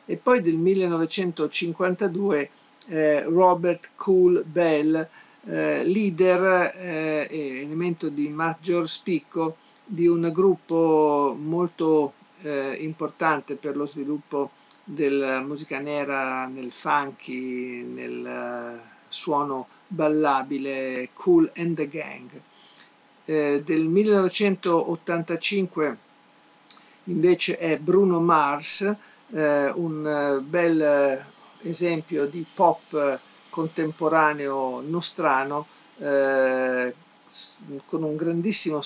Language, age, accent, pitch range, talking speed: Italian, 50-69, native, 145-175 Hz, 90 wpm